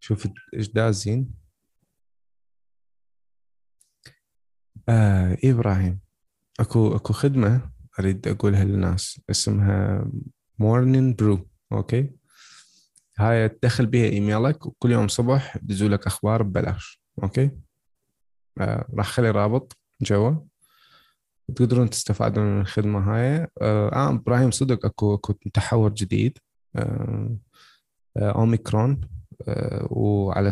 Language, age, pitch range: Arabic, 20-39, 100-125 Hz